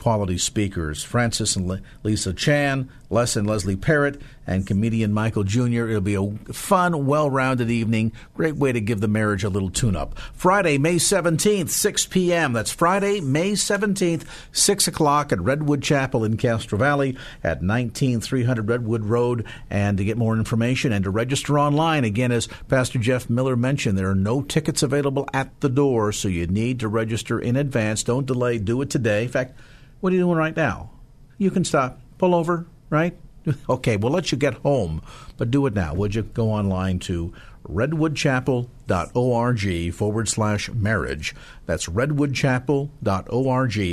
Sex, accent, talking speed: male, American, 165 wpm